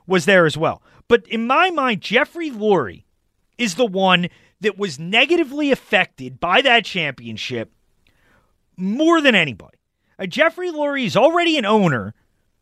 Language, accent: English, American